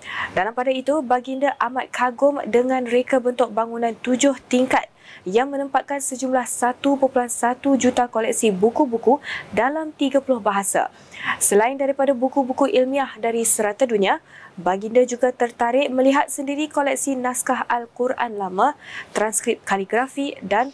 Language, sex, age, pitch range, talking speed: Malay, female, 20-39, 235-275 Hz, 120 wpm